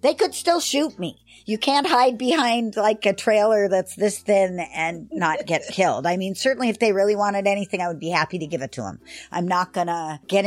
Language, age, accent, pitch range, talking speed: English, 50-69, American, 165-230 Hz, 235 wpm